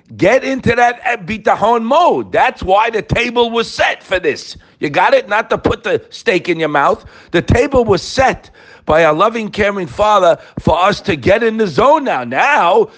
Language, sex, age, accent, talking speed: English, male, 50-69, American, 210 wpm